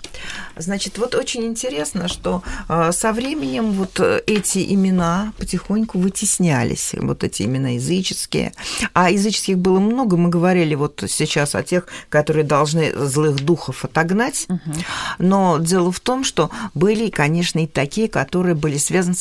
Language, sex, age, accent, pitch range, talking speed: Russian, female, 40-59, native, 150-190 Hz, 135 wpm